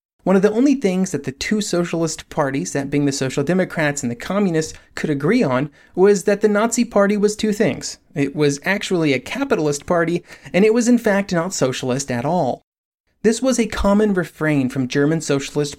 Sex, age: male, 30-49